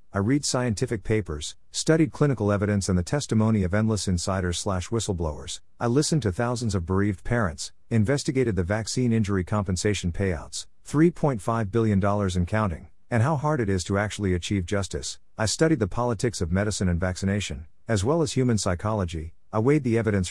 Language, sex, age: English, male, 50-69